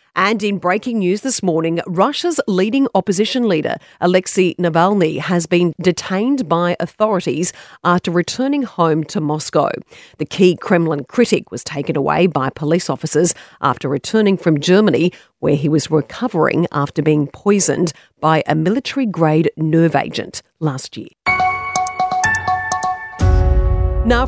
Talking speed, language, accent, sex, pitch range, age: 125 wpm, English, Australian, female, 170-240 Hz, 40-59